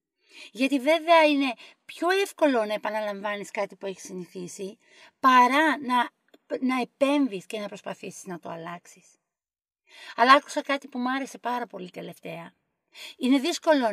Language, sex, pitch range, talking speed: Greek, female, 230-290 Hz, 140 wpm